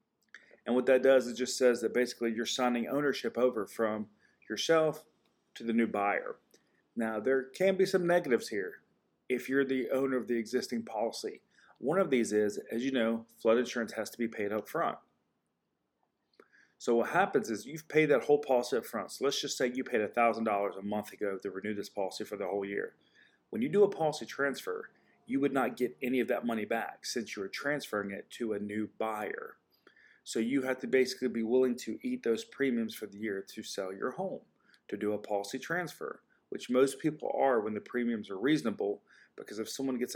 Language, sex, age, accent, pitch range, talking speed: English, male, 30-49, American, 110-135 Hz, 205 wpm